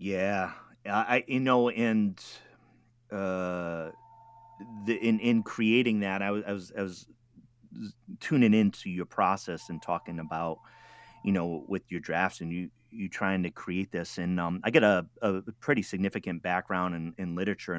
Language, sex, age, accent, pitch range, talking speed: English, male, 30-49, American, 85-110 Hz, 160 wpm